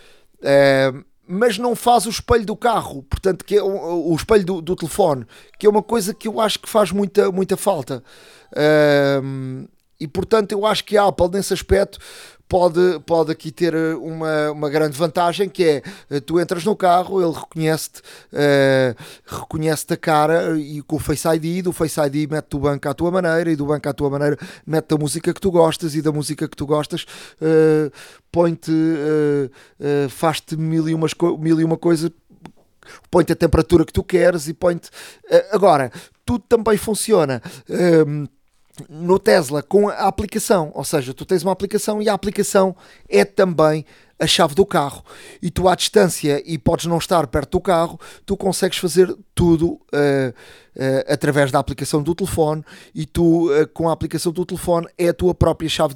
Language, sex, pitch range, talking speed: Portuguese, male, 150-185 Hz, 180 wpm